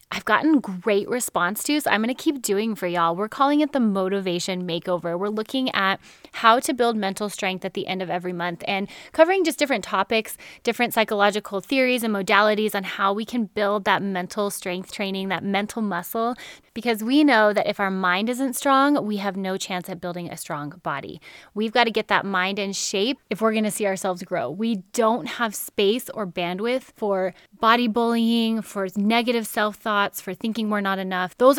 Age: 10-29